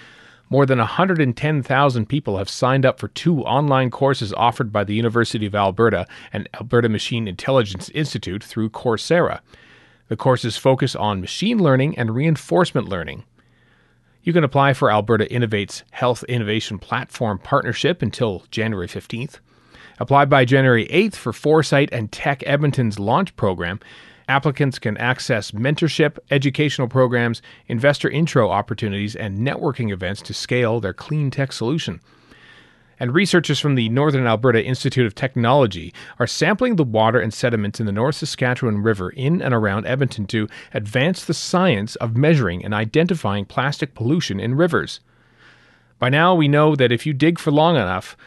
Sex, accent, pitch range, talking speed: male, American, 110-145 Hz, 150 wpm